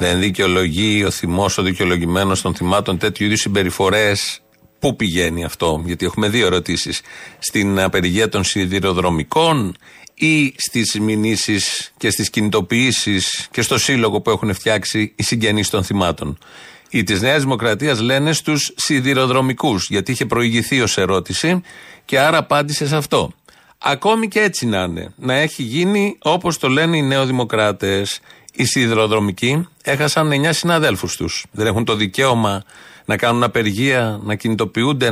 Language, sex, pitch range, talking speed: Greek, male, 100-135 Hz, 145 wpm